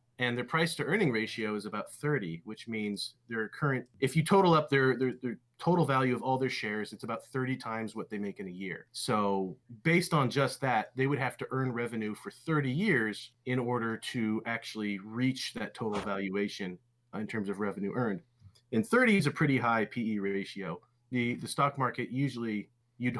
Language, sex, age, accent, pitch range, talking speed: English, male, 30-49, American, 110-135 Hz, 200 wpm